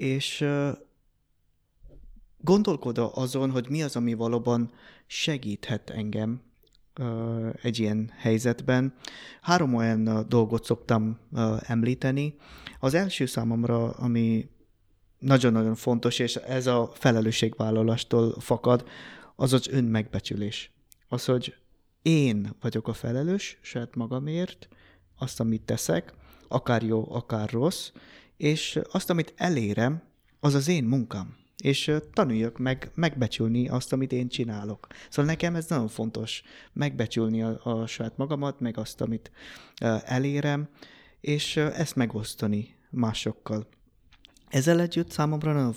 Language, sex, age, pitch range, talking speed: Hungarian, male, 20-39, 110-135 Hz, 115 wpm